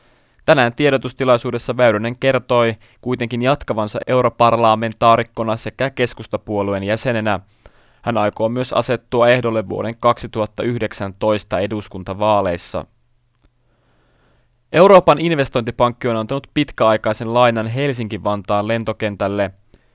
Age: 20-39